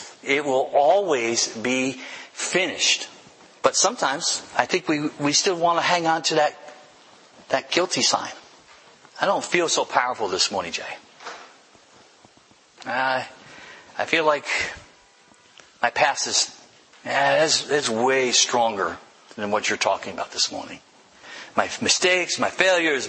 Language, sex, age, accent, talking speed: English, male, 50-69, American, 125 wpm